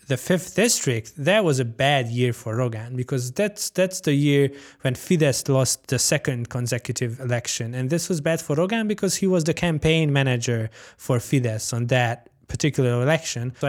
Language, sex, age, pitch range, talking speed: English, male, 20-39, 130-165 Hz, 180 wpm